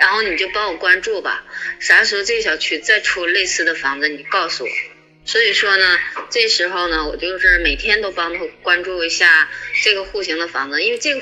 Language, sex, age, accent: Chinese, female, 20-39, native